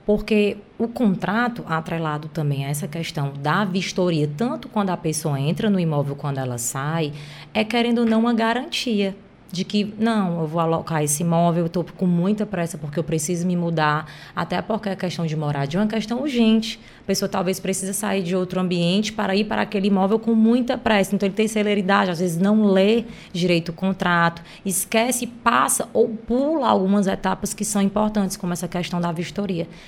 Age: 20-39